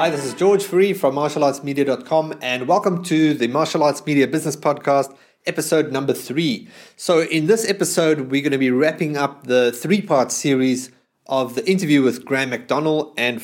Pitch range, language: 130-170 Hz, English